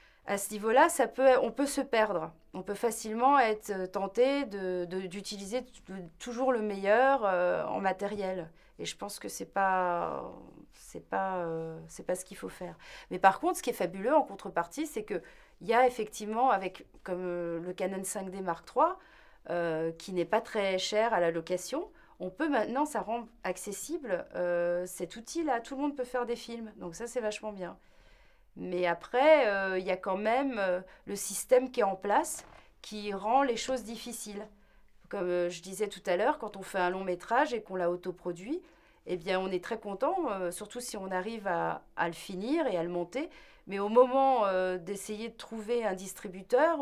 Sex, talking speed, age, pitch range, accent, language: female, 200 wpm, 30-49, 185-235 Hz, French, French